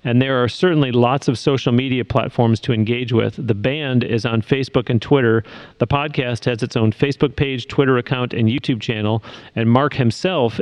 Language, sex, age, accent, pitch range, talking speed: English, male, 40-59, American, 115-140 Hz, 190 wpm